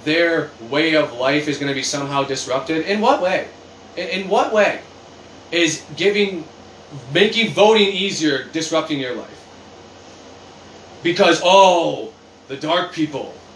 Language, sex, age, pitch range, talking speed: English, male, 20-39, 125-170 Hz, 130 wpm